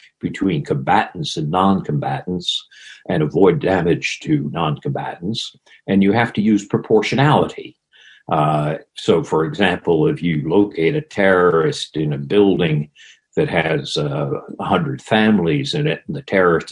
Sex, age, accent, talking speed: male, 60-79, American, 135 wpm